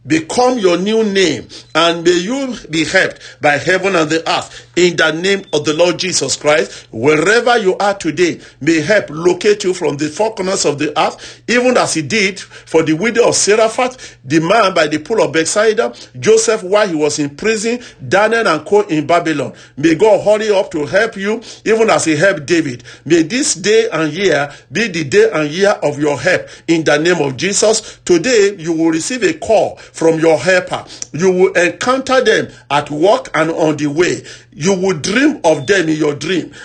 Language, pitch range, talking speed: English, 150-210 Hz, 200 wpm